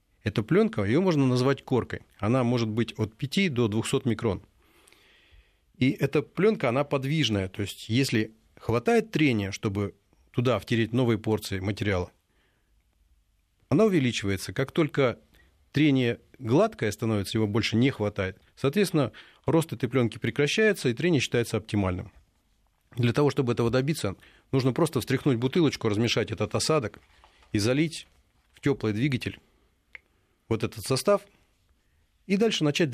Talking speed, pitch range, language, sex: 135 wpm, 105-135 Hz, Russian, male